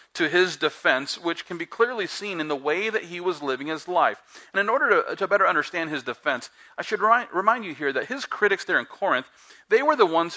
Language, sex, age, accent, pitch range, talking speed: English, male, 40-59, American, 130-200 Hz, 235 wpm